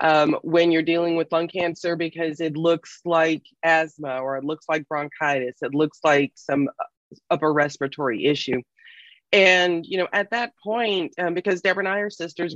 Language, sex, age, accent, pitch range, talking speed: English, female, 30-49, American, 145-180 Hz, 175 wpm